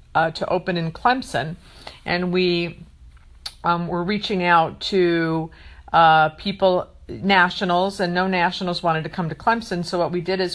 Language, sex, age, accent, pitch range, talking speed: English, female, 50-69, American, 170-195 Hz, 160 wpm